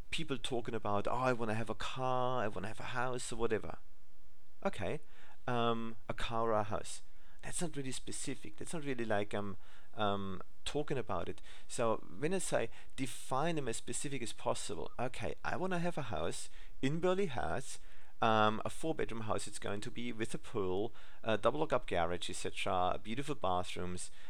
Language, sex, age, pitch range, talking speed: English, male, 40-59, 95-125 Hz, 185 wpm